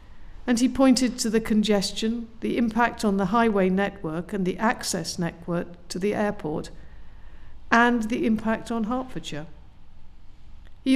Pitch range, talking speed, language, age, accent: 175-215 Hz, 135 wpm, English, 50-69, British